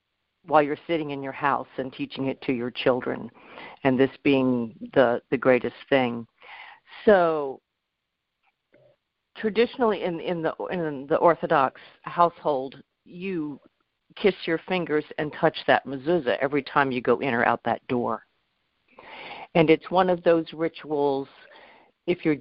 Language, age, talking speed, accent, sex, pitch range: English, 50-69, 140 wpm, American, female, 130-165 Hz